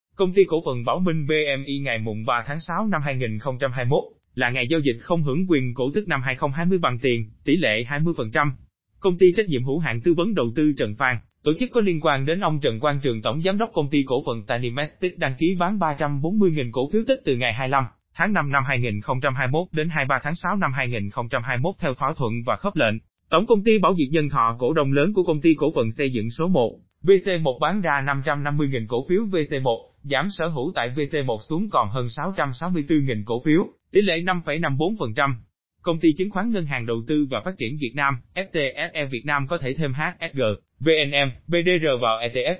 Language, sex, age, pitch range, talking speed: Vietnamese, male, 20-39, 125-170 Hz, 215 wpm